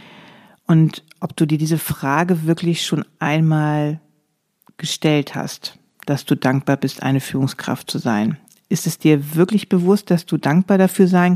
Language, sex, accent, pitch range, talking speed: German, female, German, 150-180 Hz, 155 wpm